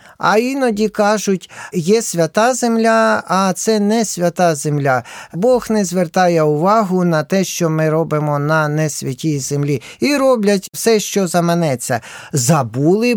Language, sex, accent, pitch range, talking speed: Ukrainian, male, native, 135-190 Hz, 130 wpm